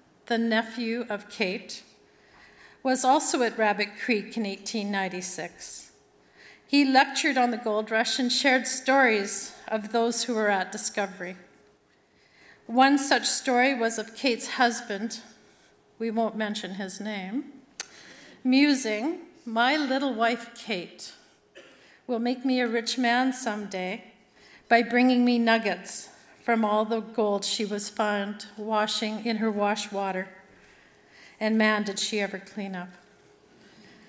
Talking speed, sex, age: 130 wpm, female, 40-59